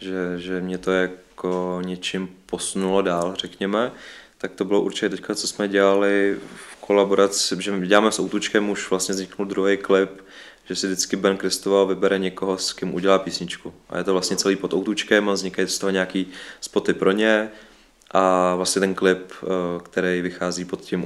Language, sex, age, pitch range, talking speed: Czech, male, 20-39, 90-100 Hz, 180 wpm